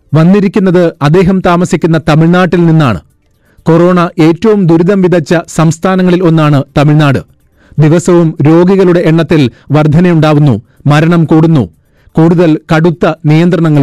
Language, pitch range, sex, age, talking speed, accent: Malayalam, 145-175 Hz, male, 30-49, 85 wpm, native